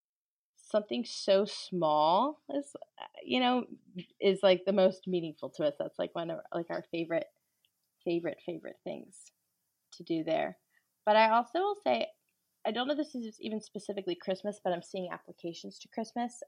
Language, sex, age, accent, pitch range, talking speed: English, female, 20-39, American, 175-220 Hz, 170 wpm